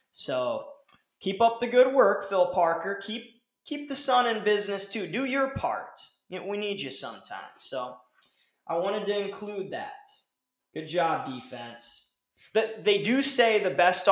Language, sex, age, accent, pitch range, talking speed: English, male, 20-39, American, 160-225 Hz, 155 wpm